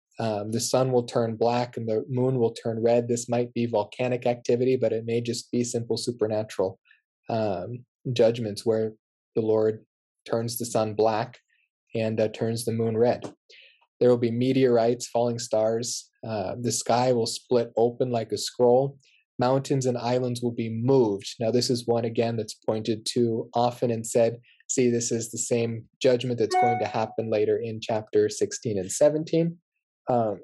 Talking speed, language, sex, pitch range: 175 wpm, English, male, 115-125 Hz